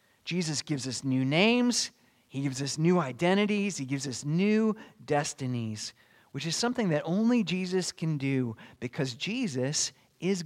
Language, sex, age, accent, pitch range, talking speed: English, male, 30-49, American, 145-210 Hz, 150 wpm